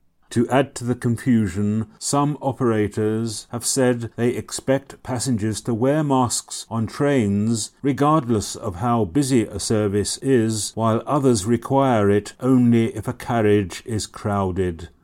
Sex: male